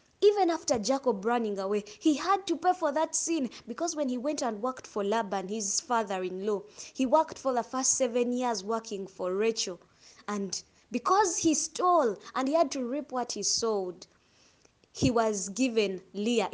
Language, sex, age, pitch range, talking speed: English, female, 20-39, 205-275 Hz, 175 wpm